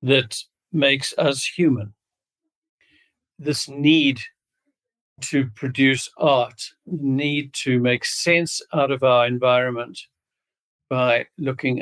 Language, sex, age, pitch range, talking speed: English, male, 60-79, 125-145 Hz, 95 wpm